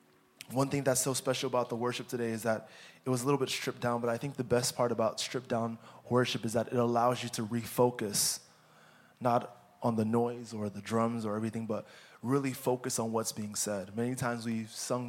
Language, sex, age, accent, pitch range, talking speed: English, male, 20-39, American, 115-130 Hz, 220 wpm